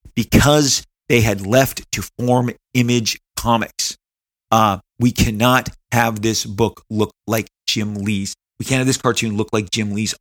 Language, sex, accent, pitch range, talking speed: English, male, American, 110-135 Hz, 160 wpm